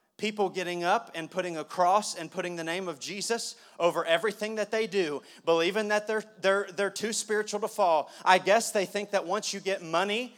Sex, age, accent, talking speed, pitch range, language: male, 30-49, American, 210 wpm, 195-230 Hz, English